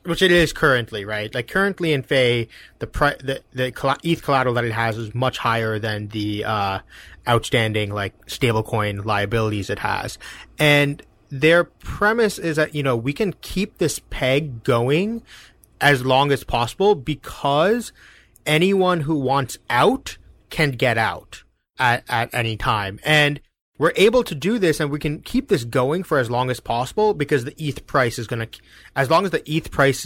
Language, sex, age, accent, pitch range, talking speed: English, male, 30-49, American, 115-155 Hz, 175 wpm